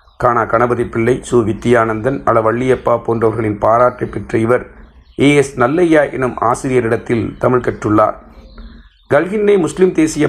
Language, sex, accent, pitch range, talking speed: Tamil, male, native, 115-135 Hz, 105 wpm